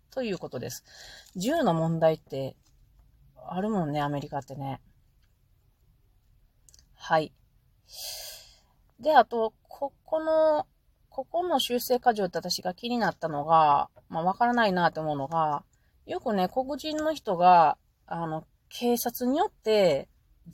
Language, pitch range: Japanese, 145-235 Hz